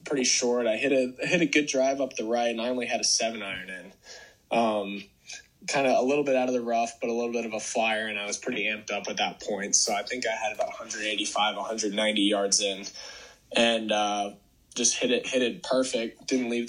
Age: 20-39